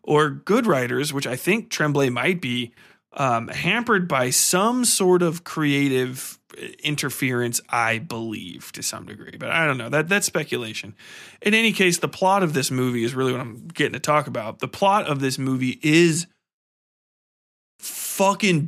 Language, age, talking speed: English, 20-39, 165 wpm